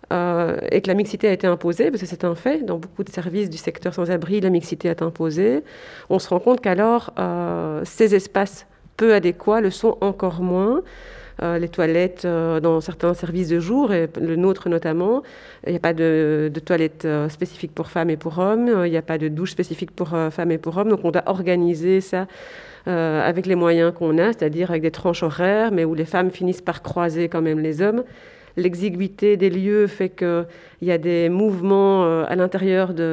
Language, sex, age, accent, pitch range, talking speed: French, female, 40-59, French, 175-210 Hz, 215 wpm